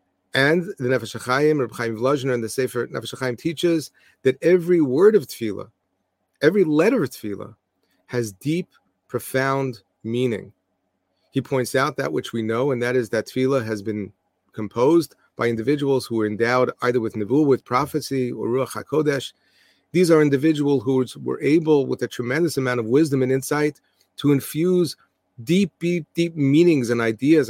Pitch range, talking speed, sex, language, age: 115-150 Hz, 165 wpm, male, English, 40-59